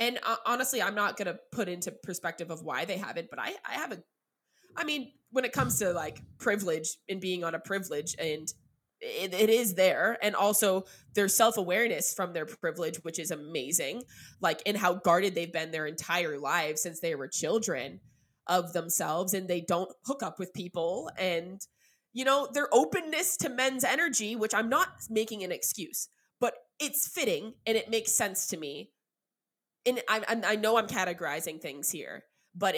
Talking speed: 185 wpm